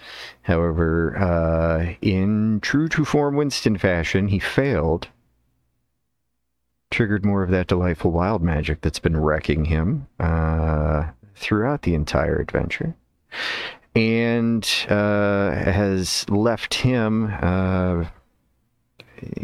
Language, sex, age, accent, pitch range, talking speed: English, male, 40-59, American, 80-105 Hz, 100 wpm